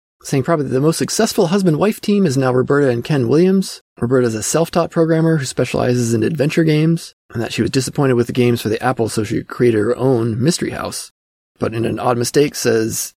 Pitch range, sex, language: 115-145 Hz, male, English